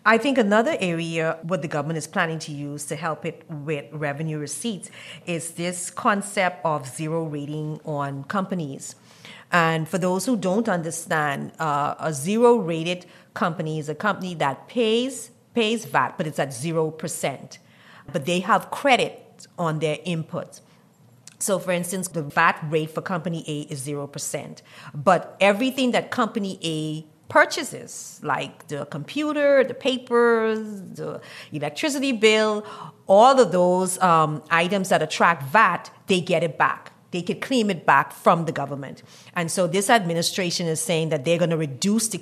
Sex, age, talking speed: female, 40-59, 160 wpm